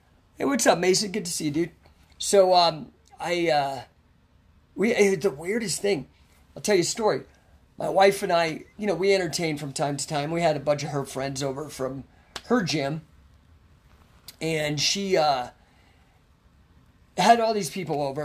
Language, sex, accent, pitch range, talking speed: English, male, American, 130-180 Hz, 175 wpm